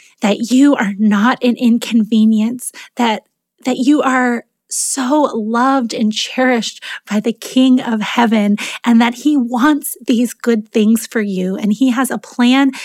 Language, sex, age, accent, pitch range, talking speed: English, female, 20-39, American, 225-280 Hz, 155 wpm